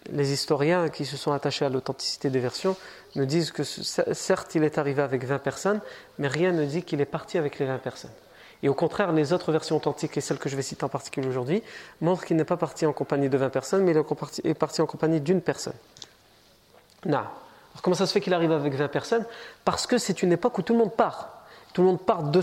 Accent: French